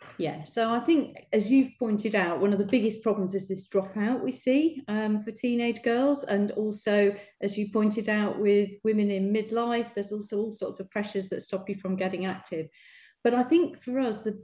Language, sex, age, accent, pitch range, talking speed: English, female, 40-59, British, 195-245 Hz, 210 wpm